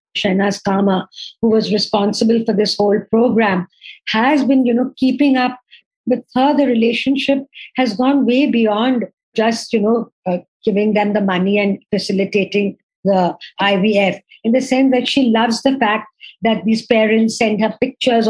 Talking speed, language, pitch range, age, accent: 160 wpm, English, 210-245 Hz, 50-69, Indian